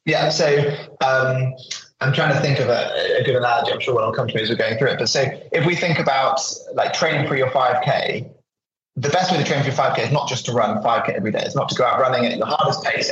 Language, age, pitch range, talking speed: English, 20-39, 120-150 Hz, 280 wpm